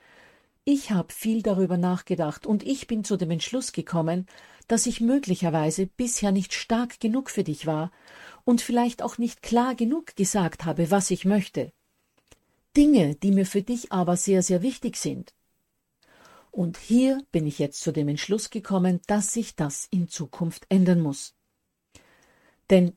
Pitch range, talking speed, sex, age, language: 165-220 Hz, 155 wpm, female, 50-69, German